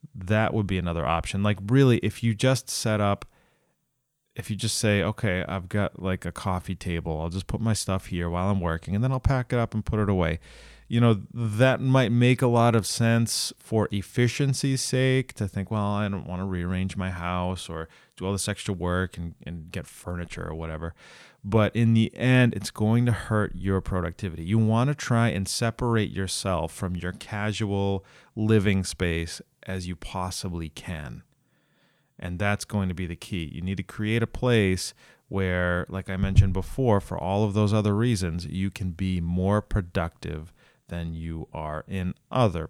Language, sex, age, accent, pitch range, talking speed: English, male, 30-49, American, 90-115 Hz, 190 wpm